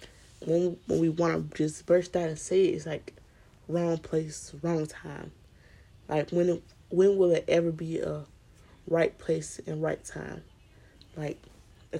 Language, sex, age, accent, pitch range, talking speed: English, female, 20-39, American, 155-190 Hz, 165 wpm